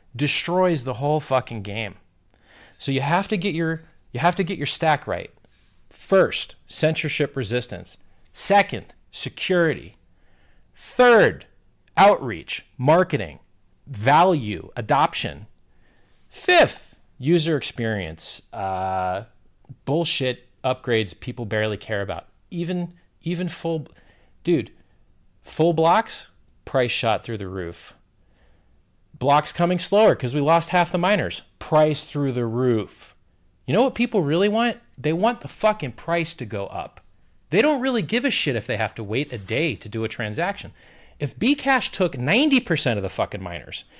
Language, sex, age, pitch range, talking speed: English, male, 40-59, 110-175 Hz, 140 wpm